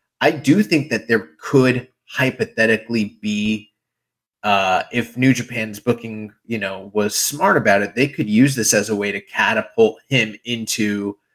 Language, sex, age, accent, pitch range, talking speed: English, male, 30-49, American, 105-120 Hz, 160 wpm